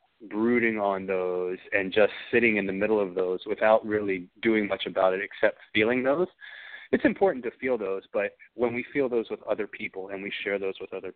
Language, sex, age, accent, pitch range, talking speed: English, male, 30-49, American, 95-130 Hz, 210 wpm